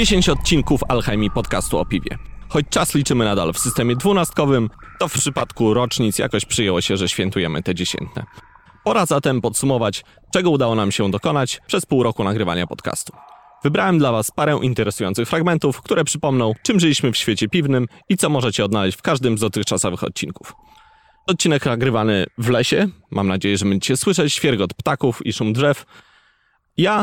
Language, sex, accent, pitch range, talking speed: Polish, male, native, 110-165 Hz, 165 wpm